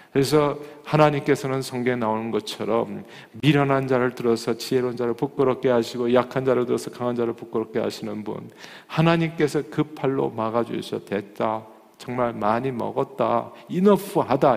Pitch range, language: 110-140 Hz, Korean